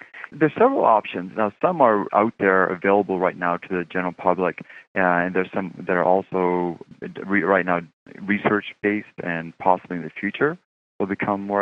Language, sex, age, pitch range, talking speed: English, male, 30-49, 85-95 Hz, 170 wpm